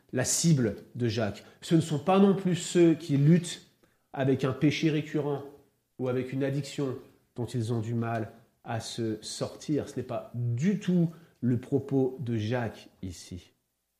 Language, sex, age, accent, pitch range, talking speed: French, male, 40-59, French, 125-185 Hz, 165 wpm